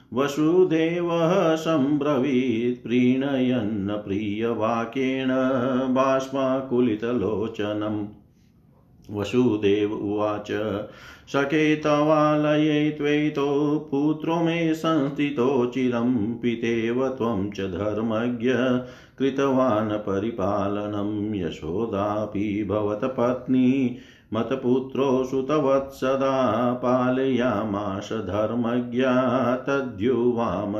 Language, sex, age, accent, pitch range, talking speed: Hindi, male, 50-69, native, 105-130 Hz, 35 wpm